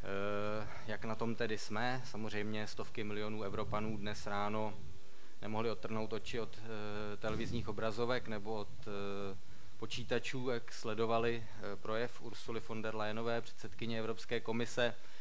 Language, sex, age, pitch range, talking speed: Czech, male, 20-39, 105-115 Hz, 120 wpm